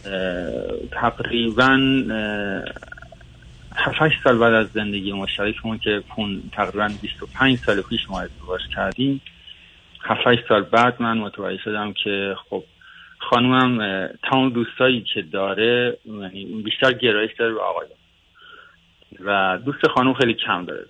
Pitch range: 100-125 Hz